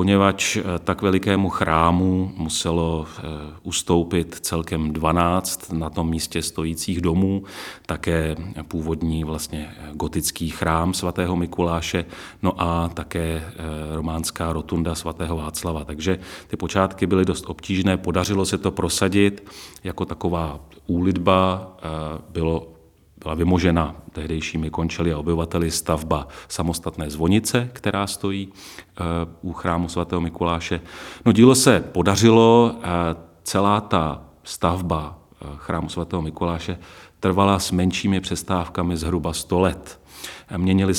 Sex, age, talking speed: male, 40-59, 110 wpm